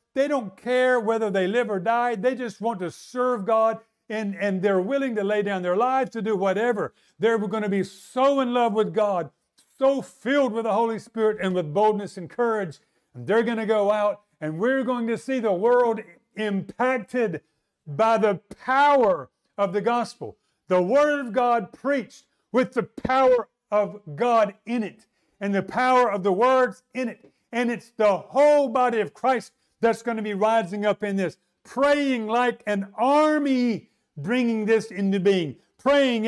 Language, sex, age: English, male, 50-69